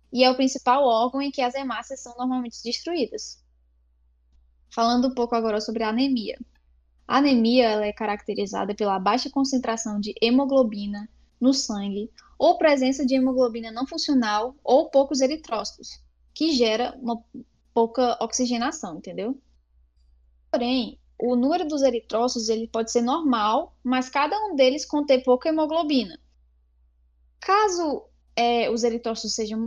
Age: 10-29